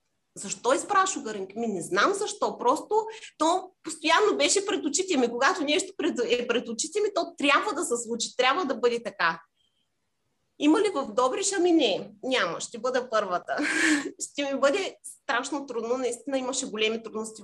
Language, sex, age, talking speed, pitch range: Bulgarian, female, 30-49, 160 wpm, 220-300 Hz